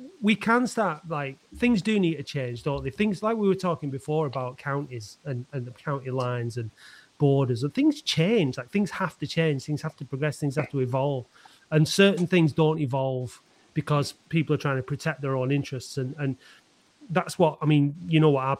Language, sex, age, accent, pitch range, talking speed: English, male, 30-49, British, 135-170 Hz, 215 wpm